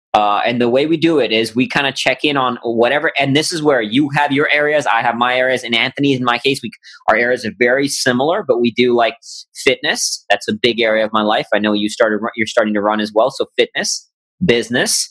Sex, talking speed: male, 250 wpm